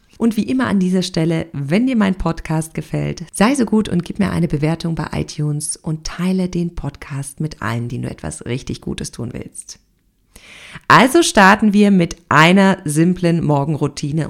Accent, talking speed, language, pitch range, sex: German, 170 wpm, German, 155-200 Hz, female